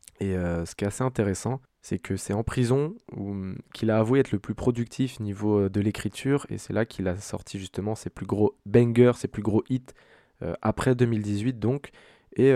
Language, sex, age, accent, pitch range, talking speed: French, male, 20-39, French, 100-125 Hz, 205 wpm